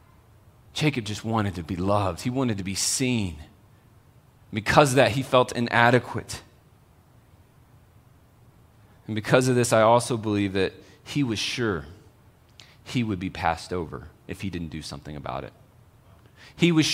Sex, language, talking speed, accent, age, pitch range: male, English, 150 wpm, American, 30-49, 100-130 Hz